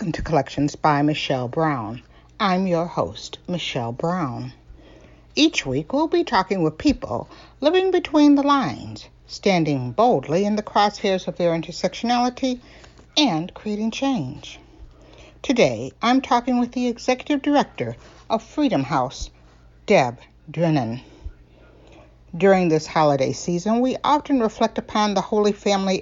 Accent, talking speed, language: American, 125 wpm, English